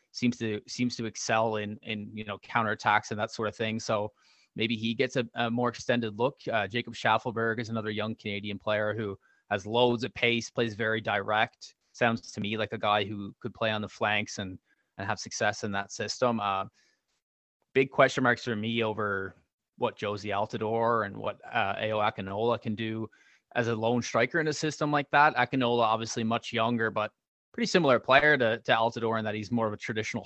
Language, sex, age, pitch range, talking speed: English, male, 20-39, 110-135 Hz, 205 wpm